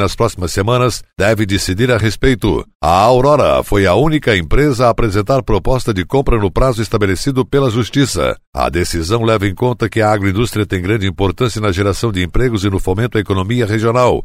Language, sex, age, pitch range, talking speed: Portuguese, male, 60-79, 100-120 Hz, 185 wpm